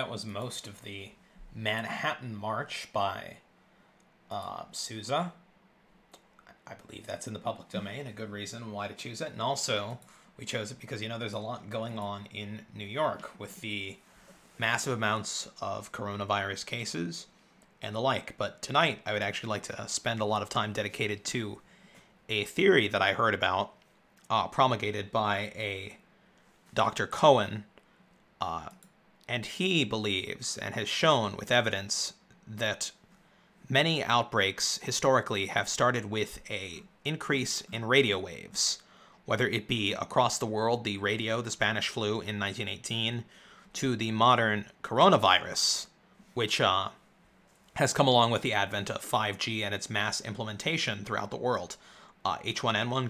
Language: English